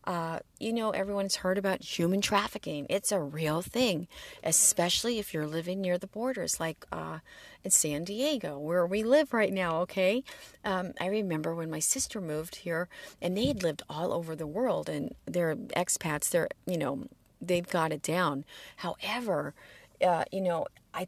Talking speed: 170 wpm